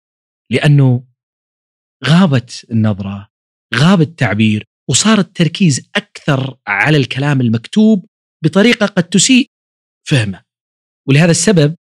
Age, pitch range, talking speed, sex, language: 40-59, 105-155 Hz, 85 wpm, male, Arabic